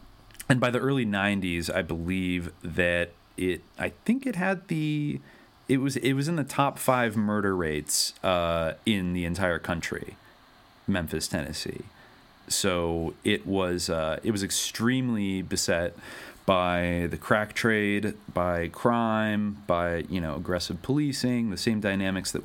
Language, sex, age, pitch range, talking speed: English, male, 30-49, 85-105 Hz, 135 wpm